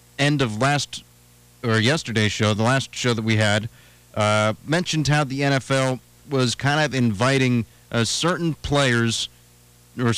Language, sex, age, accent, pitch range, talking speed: English, male, 30-49, American, 115-130 Hz, 145 wpm